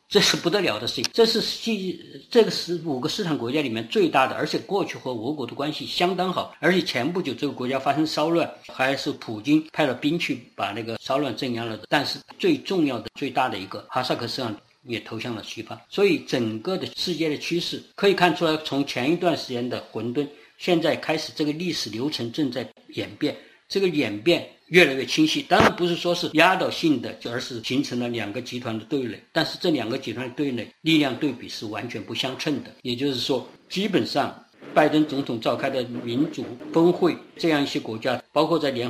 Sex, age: male, 50-69